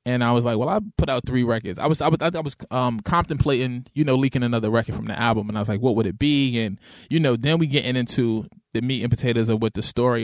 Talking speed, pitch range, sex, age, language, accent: 285 wpm, 115-145 Hz, male, 20-39, English, American